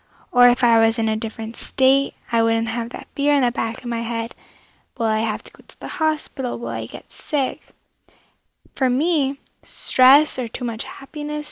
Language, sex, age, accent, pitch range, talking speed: English, female, 10-29, American, 225-270 Hz, 200 wpm